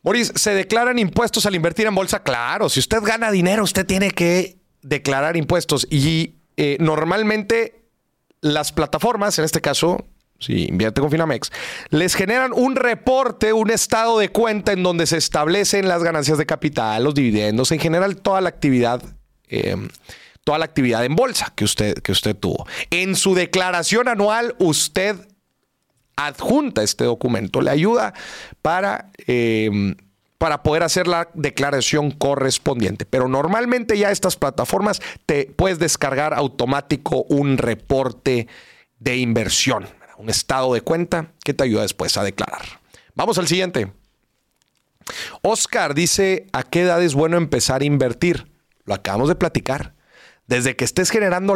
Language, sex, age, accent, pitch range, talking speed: Spanish, male, 30-49, Mexican, 135-190 Hz, 145 wpm